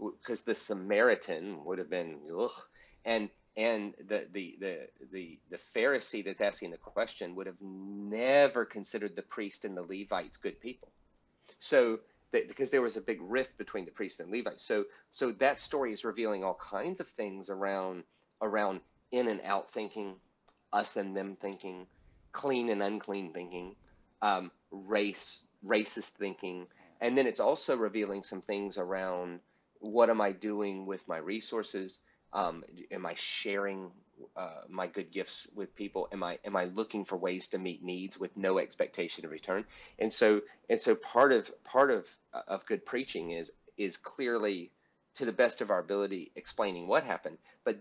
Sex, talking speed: male, 170 wpm